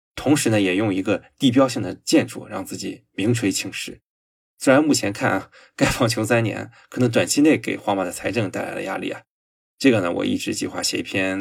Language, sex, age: Chinese, male, 20-39